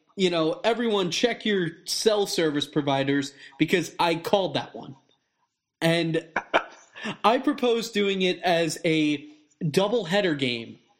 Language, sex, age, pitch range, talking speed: English, male, 20-39, 145-190 Hz, 125 wpm